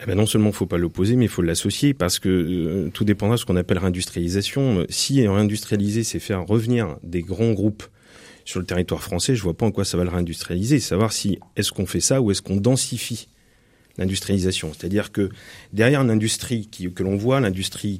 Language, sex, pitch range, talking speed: French, male, 95-120 Hz, 210 wpm